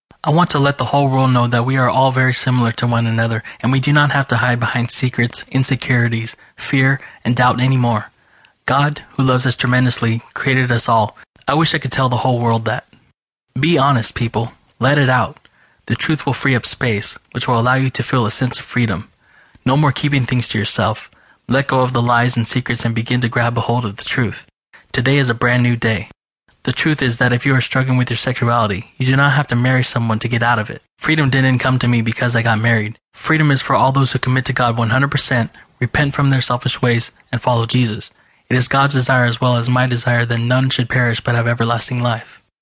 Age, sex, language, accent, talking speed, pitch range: 20-39, male, English, American, 230 wpm, 120-130 Hz